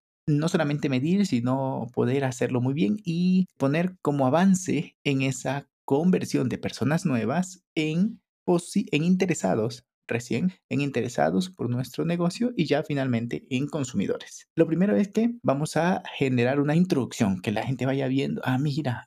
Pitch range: 125-180 Hz